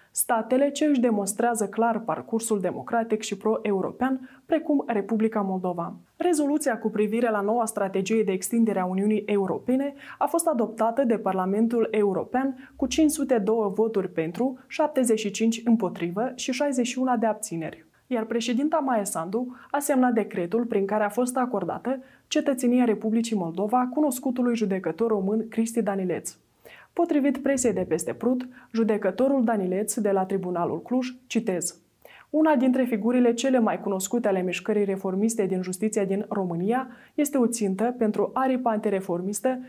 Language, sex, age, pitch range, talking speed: Romanian, female, 20-39, 205-255 Hz, 135 wpm